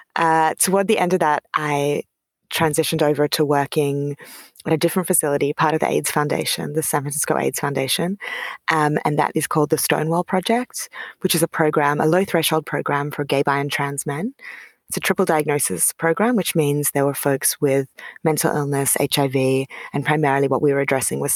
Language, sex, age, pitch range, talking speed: English, female, 20-39, 140-165 Hz, 190 wpm